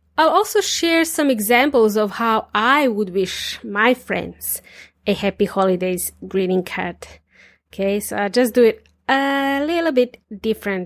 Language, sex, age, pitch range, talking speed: English, female, 30-49, 205-255 Hz, 150 wpm